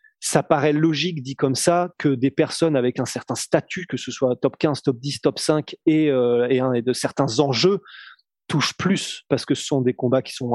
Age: 20-39